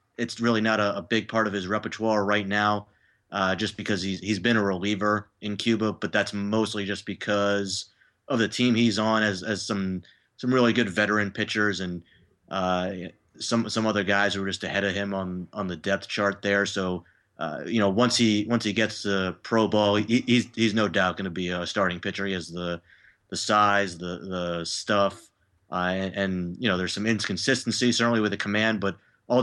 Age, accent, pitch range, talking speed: 30-49, American, 95-110 Hz, 210 wpm